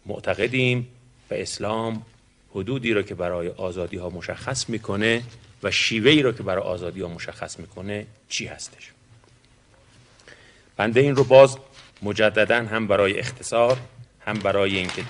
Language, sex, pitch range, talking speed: Persian, male, 100-125 Hz, 130 wpm